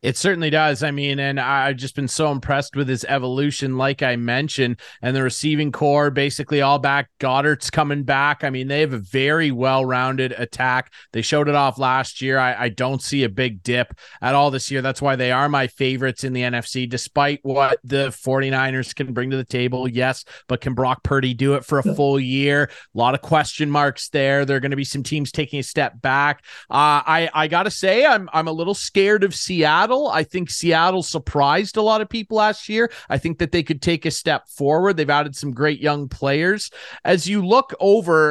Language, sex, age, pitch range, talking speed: English, male, 30-49, 135-165 Hz, 220 wpm